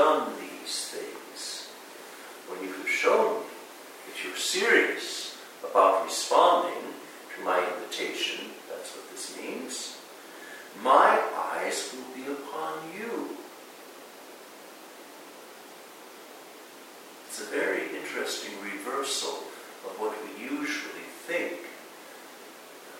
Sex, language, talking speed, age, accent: male, English, 90 wpm, 60-79, American